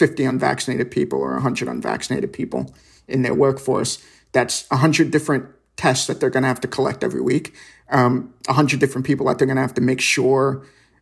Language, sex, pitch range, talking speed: English, male, 130-140 Hz, 200 wpm